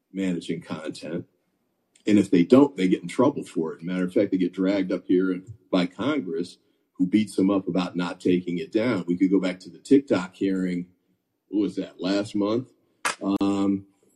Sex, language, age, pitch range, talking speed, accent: male, English, 40-59, 95-130 Hz, 195 wpm, American